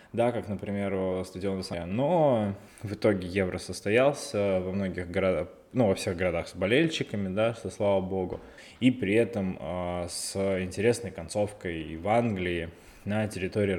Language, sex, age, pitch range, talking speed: Russian, male, 20-39, 95-130 Hz, 150 wpm